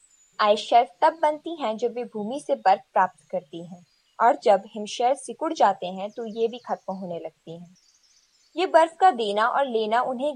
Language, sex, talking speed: Hindi, female, 190 wpm